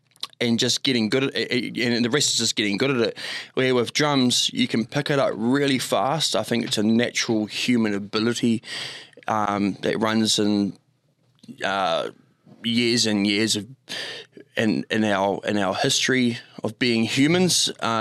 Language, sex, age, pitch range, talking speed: English, male, 20-39, 110-130 Hz, 170 wpm